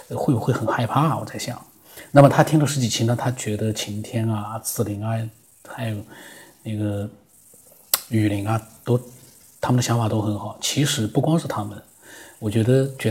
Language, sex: Chinese, male